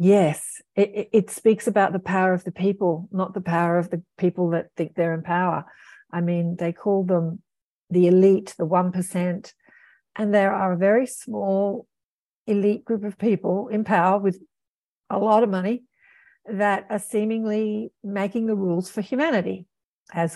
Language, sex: English, female